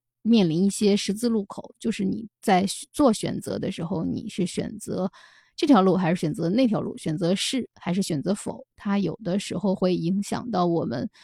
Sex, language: female, Chinese